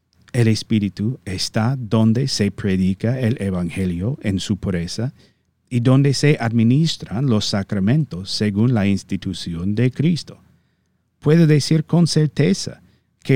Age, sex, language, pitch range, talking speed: 50-69, male, Spanish, 95-130 Hz, 120 wpm